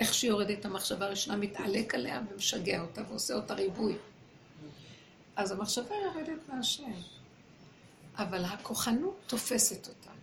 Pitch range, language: 190-260 Hz, Hebrew